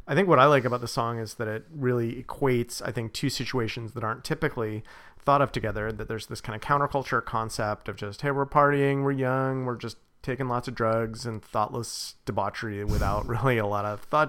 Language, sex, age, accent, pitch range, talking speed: English, male, 30-49, American, 110-130 Hz, 220 wpm